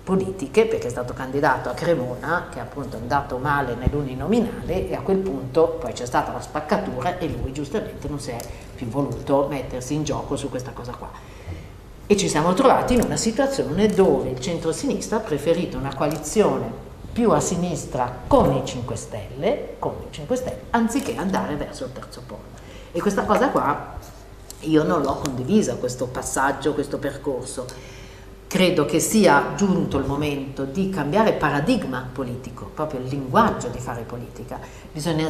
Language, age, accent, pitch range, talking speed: Italian, 50-69, native, 130-165 Hz, 160 wpm